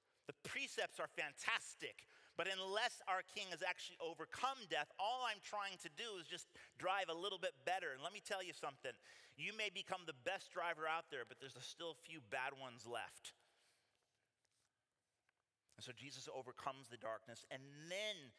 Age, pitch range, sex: 30-49, 130-190 Hz, male